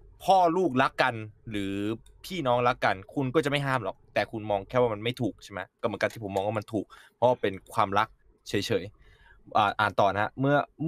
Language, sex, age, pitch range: Thai, male, 20-39, 105-135 Hz